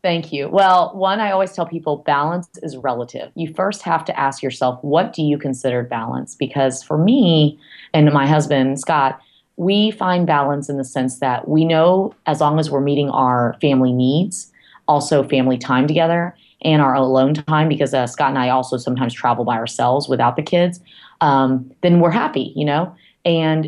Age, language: 30-49, English